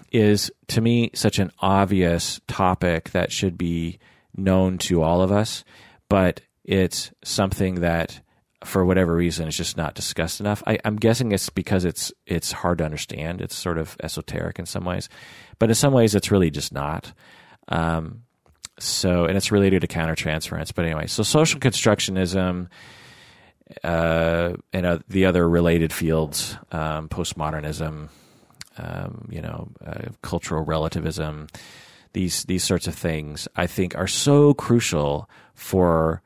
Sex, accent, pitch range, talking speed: male, American, 80-105 Hz, 150 wpm